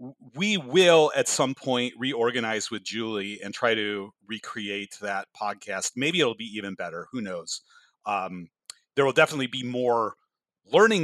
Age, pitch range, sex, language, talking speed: 30-49, 100-130 Hz, male, English, 150 wpm